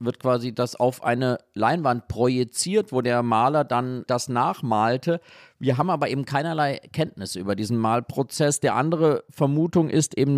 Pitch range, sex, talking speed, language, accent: 120-145 Hz, male, 155 wpm, German, German